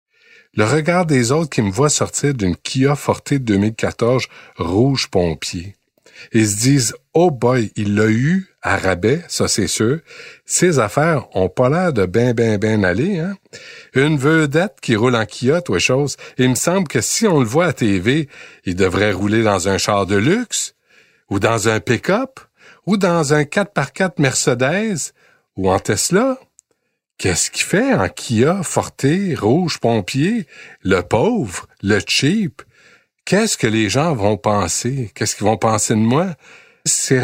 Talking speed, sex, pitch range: 170 wpm, male, 110-170 Hz